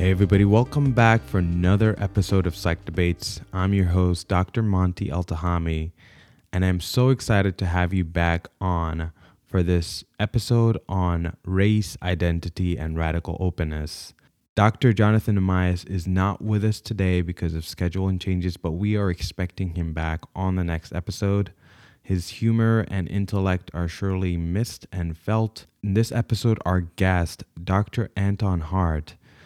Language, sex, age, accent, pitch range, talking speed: English, male, 20-39, American, 85-105 Hz, 150 wpm